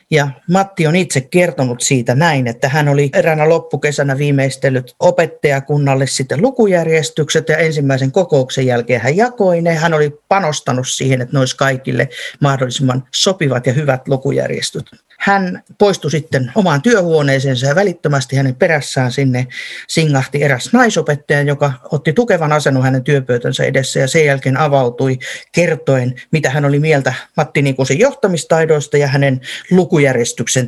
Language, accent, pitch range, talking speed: Finnish, native, 135-175 Hz, 145 wpm